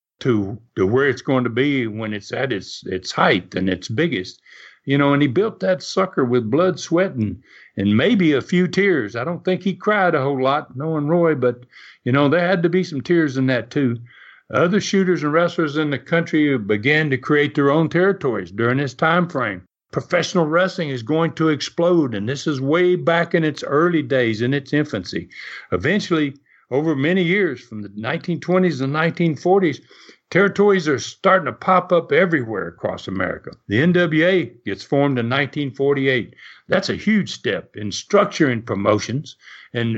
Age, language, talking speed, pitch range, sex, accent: 60-79, English, 185 wpm, 125-175 Hz, male, American